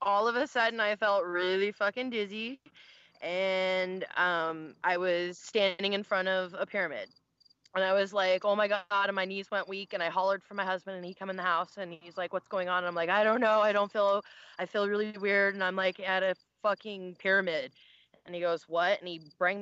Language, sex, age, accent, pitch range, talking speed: English, female, 20-39, American, 175-205 Hz, 240 wpm